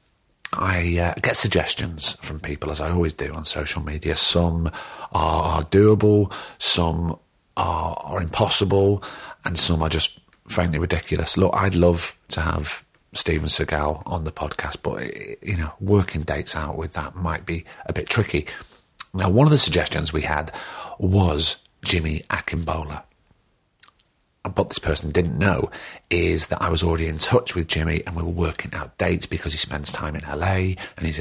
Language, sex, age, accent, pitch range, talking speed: English, male, 40-59, British, 80-95 Hz, 165 wpm